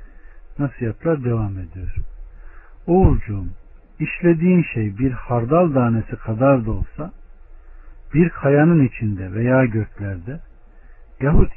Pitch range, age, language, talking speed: 90-130 Hz, 60-79, Turkish, 95 wpm